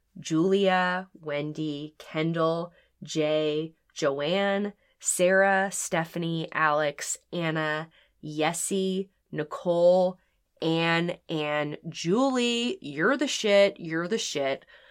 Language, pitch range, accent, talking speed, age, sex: English, 155-220 Hz, American, 80 wpm, 20-39, female